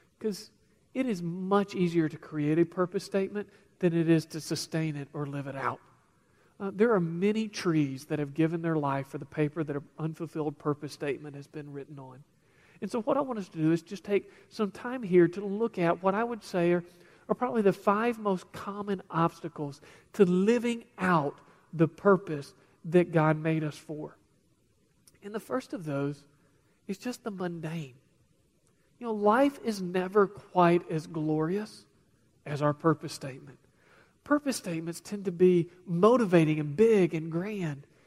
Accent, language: American, English